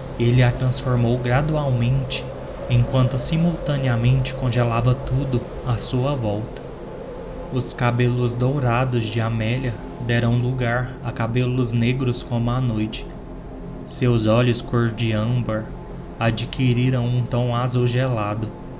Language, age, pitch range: Portuguese, 20-39, 115-130 Hz